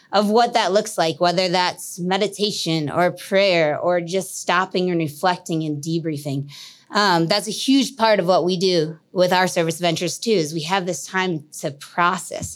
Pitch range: 170-215 Hz